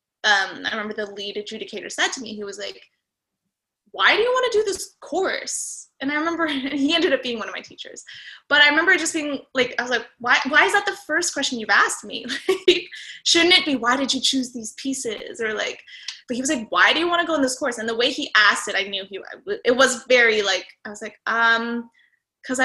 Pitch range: 220-290 Hz